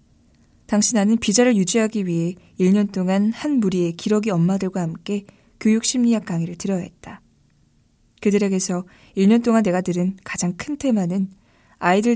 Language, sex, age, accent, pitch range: Korean, female, 20-39, native, 170-215 Hz